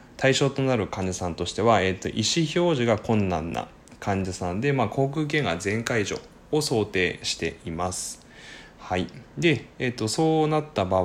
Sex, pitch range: male, 95-125 Hz